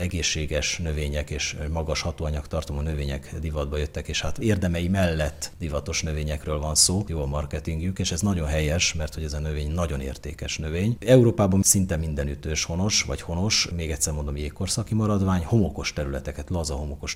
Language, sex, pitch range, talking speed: Hungarian, male, 75-95 Hz, 170 wpm